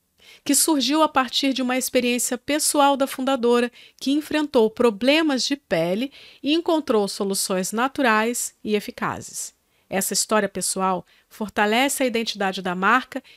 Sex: female